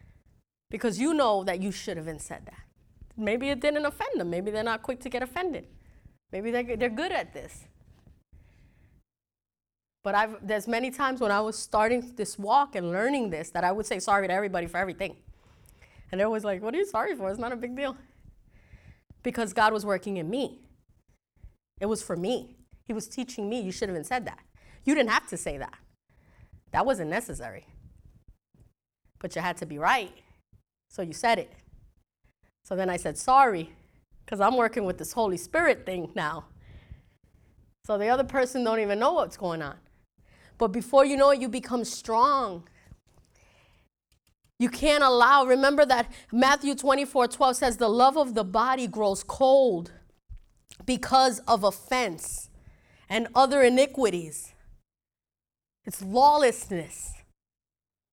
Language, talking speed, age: English, 165 wpm, 20-39